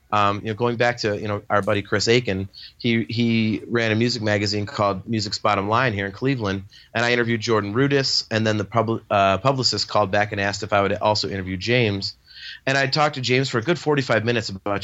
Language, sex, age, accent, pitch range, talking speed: English, male, 30-49, American, 105-135 Hz, 230 wpm